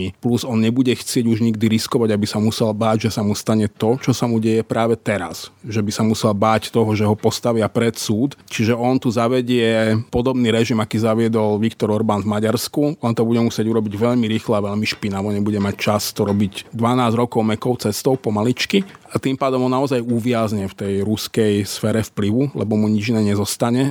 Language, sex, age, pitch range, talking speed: Slovak, male, 30-49, 105-120 Hz, 205 wpm